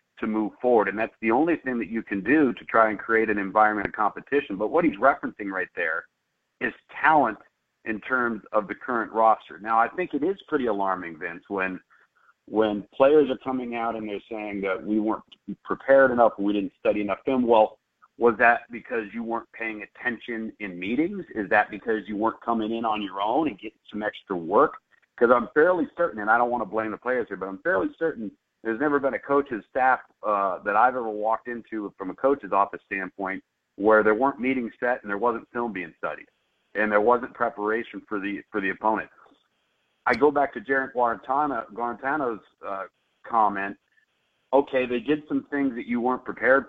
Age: 40-59